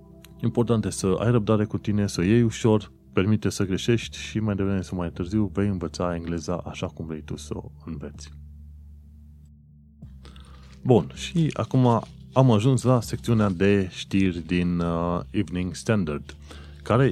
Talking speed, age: 155 wpm, 30-49